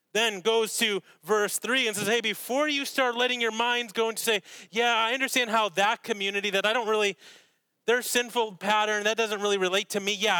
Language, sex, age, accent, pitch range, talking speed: English, male, 30-49, American, 170-210 Hz, 215 wpm